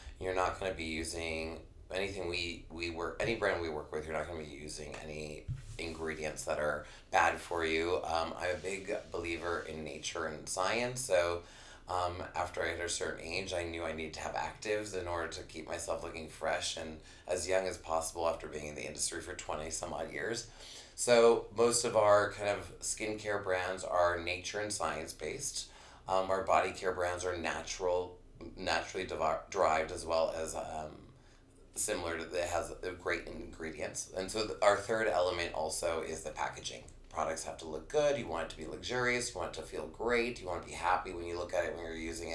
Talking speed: 205 wpm